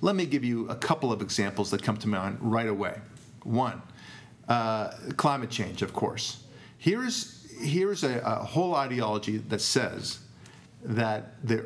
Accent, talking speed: American, 155 wpm